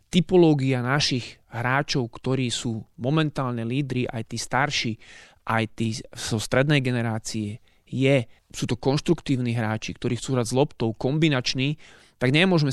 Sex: male